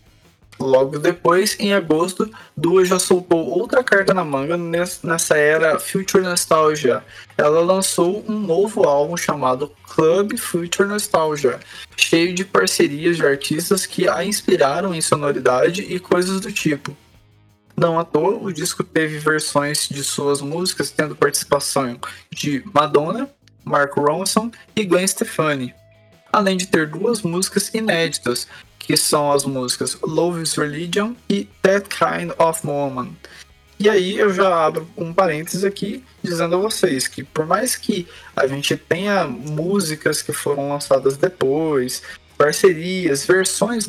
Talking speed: 135 wpm